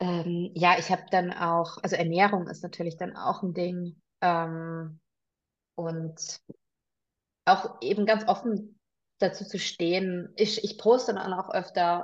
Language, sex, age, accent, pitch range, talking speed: German, female, 20-39, German, 170-190 Hz, 145 wpm